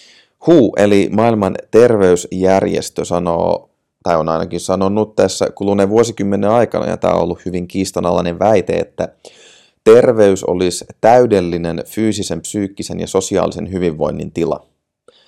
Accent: native